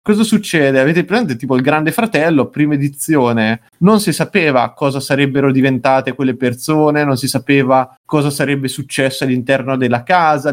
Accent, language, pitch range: native, Italian, 130-150 Hz